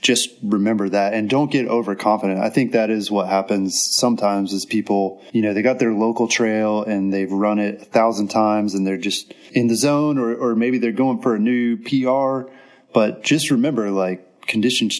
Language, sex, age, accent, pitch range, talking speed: English, male, 20-39, American, 100-120 Hz, 200 wpm